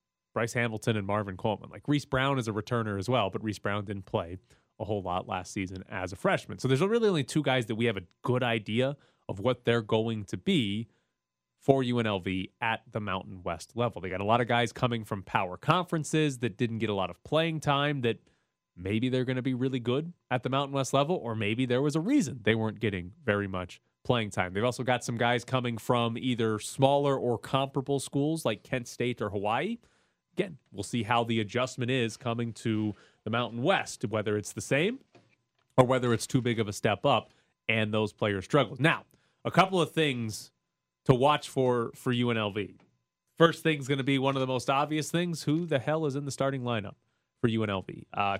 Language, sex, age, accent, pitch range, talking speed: English, male, 30-49, American, 110-135 Hz, 215 wpm